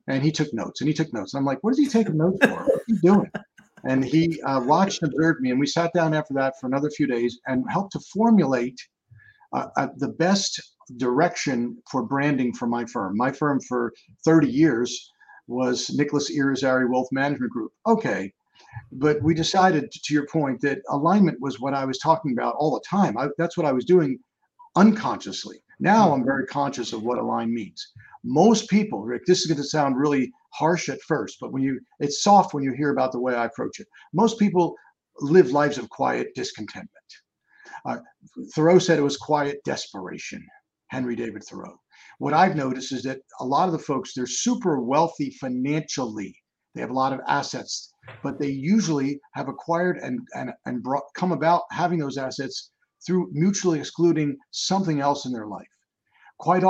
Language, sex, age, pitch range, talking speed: English, male, 50-69, 130-175 Hz, 195 wpm